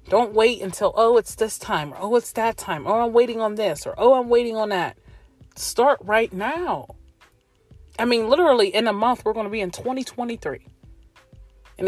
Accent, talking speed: American, 195 wpm